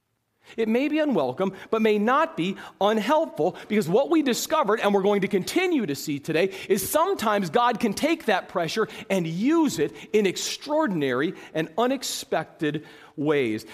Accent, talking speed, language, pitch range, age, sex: American, 155 wpm, English, 170-250 Hz, 40-59, male